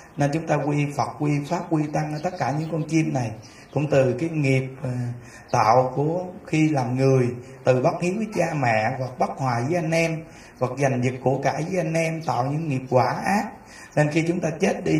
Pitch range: 130-165 Hz